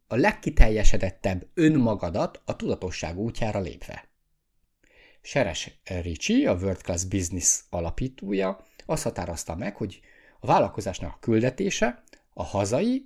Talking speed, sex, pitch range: 105 wpm, male, 90-130 Hz